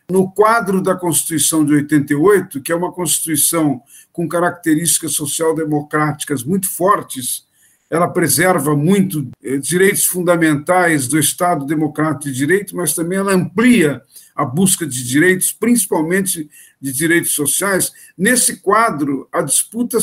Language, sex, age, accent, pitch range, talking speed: Portuguese, male, 50-69, Brazilian, 155-195 Hz, 125 wpm